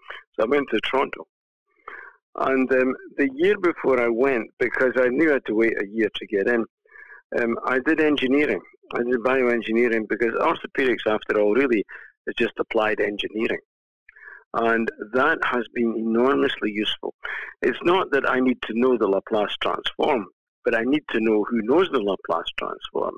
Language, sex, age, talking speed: English, male, 50-69, 170 wpm